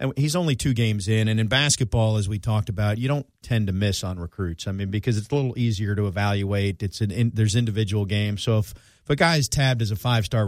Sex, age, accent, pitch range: male, 40-59, American, 100-125 Hz